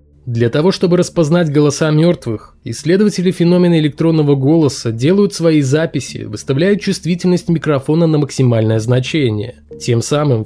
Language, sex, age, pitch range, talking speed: Russian, male, 20-39, 125-165 Hz, 120 wpm